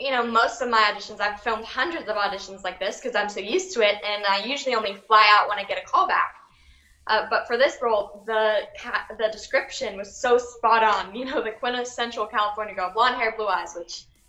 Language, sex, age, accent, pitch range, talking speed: English, female, 10-29, American, 210-265 Hz, 225 wpm